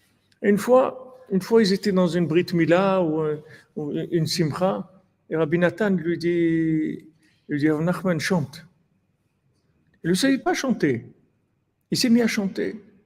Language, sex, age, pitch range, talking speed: French, male, 50-69, 145-190 Hz, 155 wpm